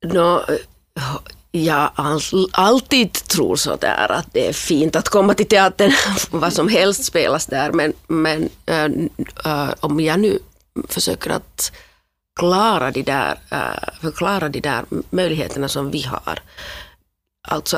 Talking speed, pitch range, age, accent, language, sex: 140 wpm, 140-185 Hz, 40-59, native, Finnish, female